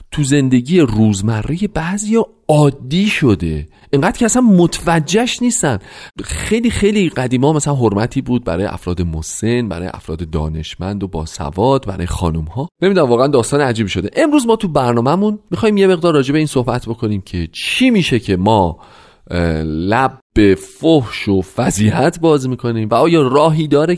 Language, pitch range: Persian, 90-140 Hz